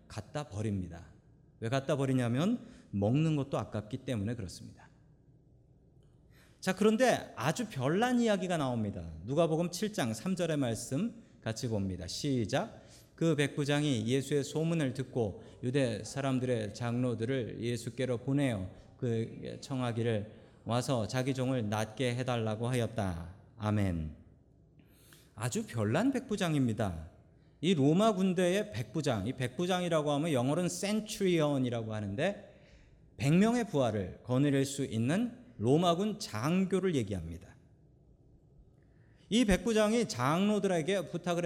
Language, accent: Korean, native